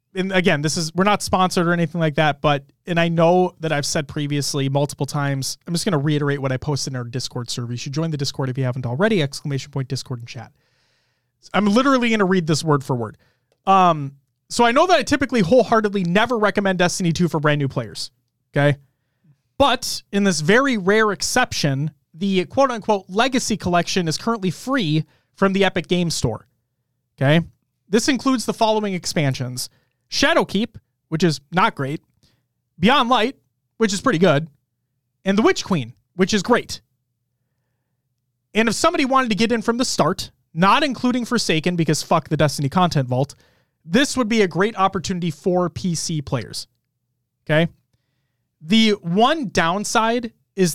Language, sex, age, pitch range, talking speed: English, male, 30-49, 135-200 Hz, 175 wpm